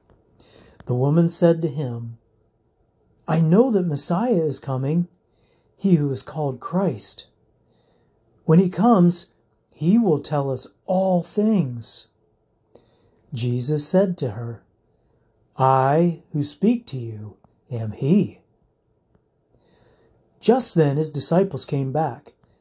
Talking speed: 110 wpm